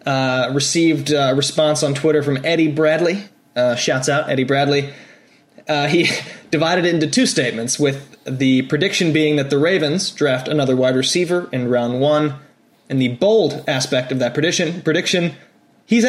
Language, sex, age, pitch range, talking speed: English, male, 20-39, 135-160 Hz, 165 wpm